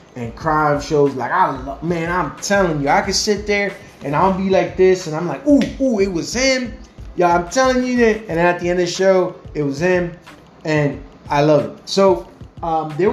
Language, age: English, 20-39